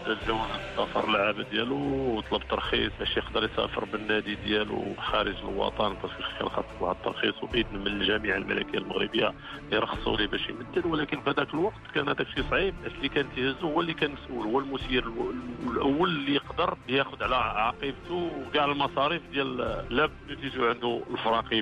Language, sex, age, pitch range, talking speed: Arabic, male, 50-69, 135-180 Hz, 160 wpm